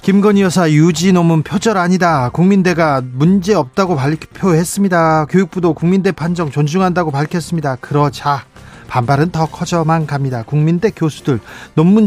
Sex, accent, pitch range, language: male, native, 130-180 Hz, Korean